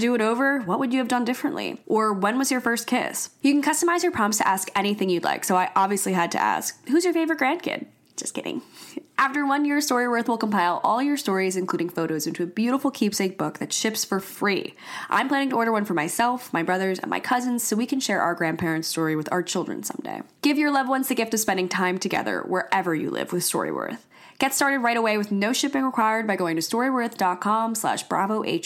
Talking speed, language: 225 wpm, English